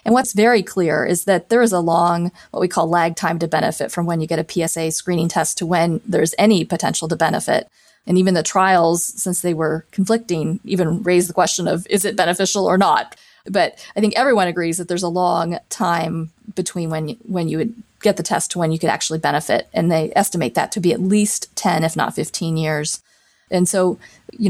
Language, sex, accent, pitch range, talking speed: English, female, American, 165-190 Hz, 225 wpm